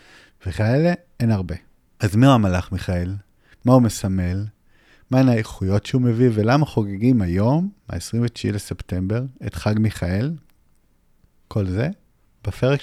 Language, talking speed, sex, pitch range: Hebrew, 115 wpm, male, 95-125 Hz